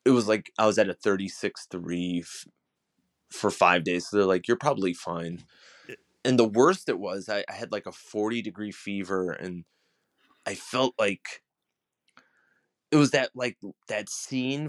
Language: English